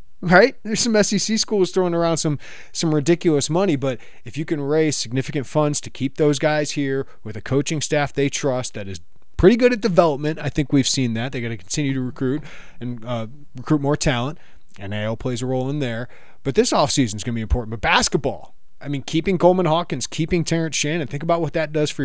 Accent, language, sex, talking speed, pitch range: American, English, male, 225 wpm, 115-155 Hz